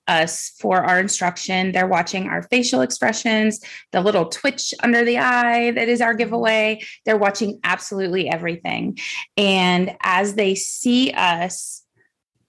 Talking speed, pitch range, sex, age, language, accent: 135 wpm, 175-215 Hz, female, 20-39, English, American